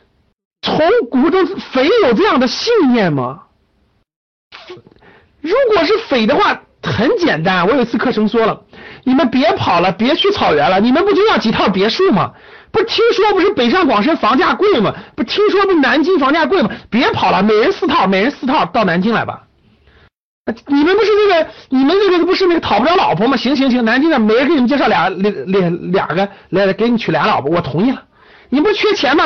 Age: 50-69